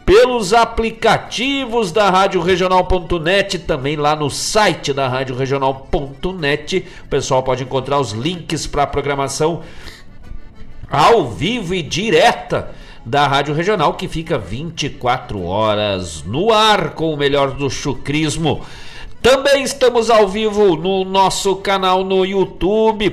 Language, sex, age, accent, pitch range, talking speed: Portuguese, male, 50-69, Brazilian, 140-205 Hz, 125 wpm